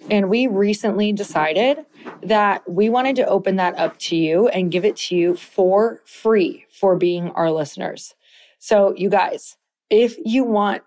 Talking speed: 165 wpm